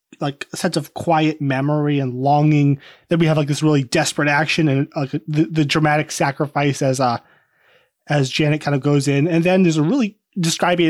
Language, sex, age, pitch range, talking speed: English, male, 20-39, 150-175 Hz, 200 wpm